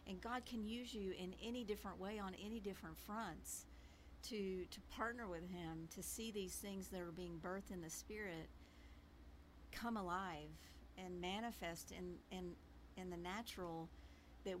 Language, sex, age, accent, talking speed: English, female, 50-69, American, 160 wpm